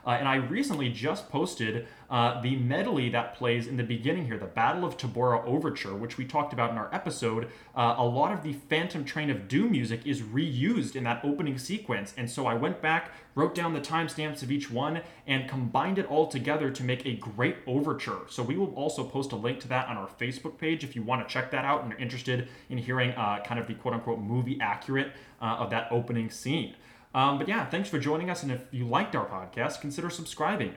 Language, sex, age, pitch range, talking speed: English, male, 20-39, 115-150 Hz, 230 wpm